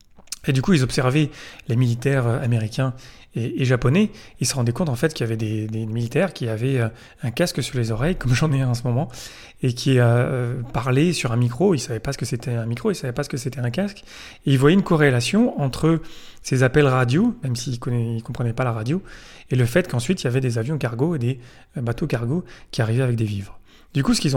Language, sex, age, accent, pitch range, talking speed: French, male, 30-49, French, 115-150 Hz, 245 wpm